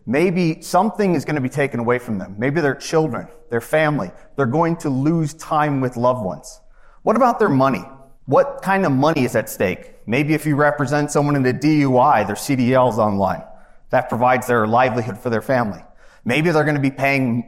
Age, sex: 30-49, male